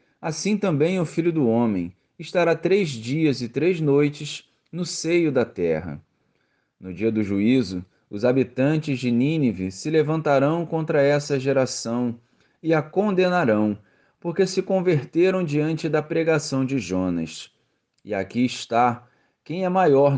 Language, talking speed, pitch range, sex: Portuguese, 135 wpm, 115-170 Hz, male